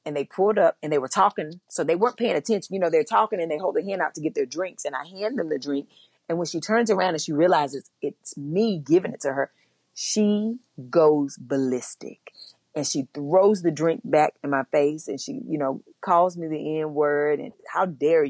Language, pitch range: English, 150-205 Hz